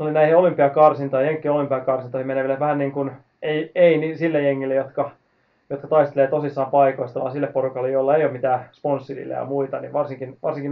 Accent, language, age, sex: native, Finnish, 20-39, male